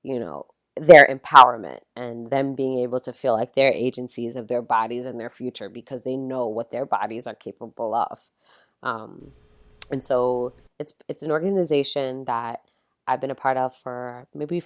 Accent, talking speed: American, 175 wpm